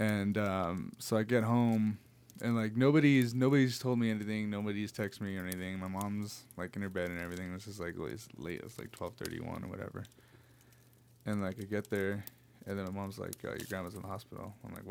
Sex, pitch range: male, 105-120 Hz